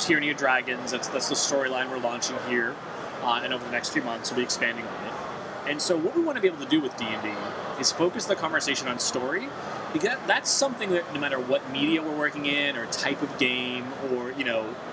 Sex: male